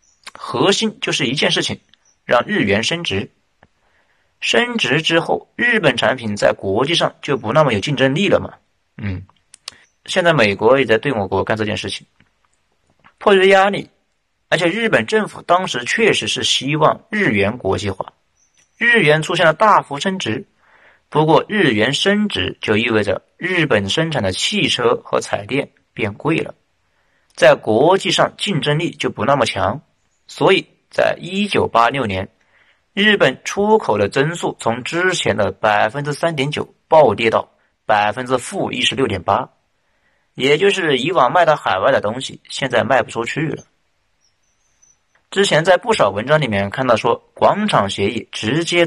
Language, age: Chinese, 50-69